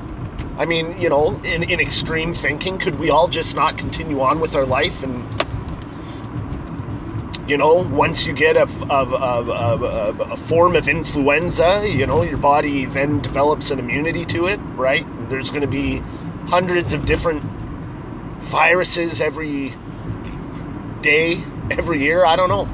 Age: 30-49